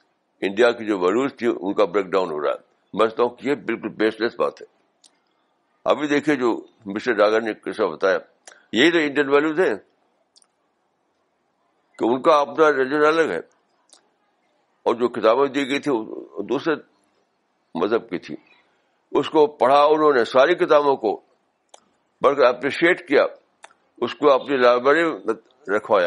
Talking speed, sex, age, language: 110 wpm, male, 60-79, Urdu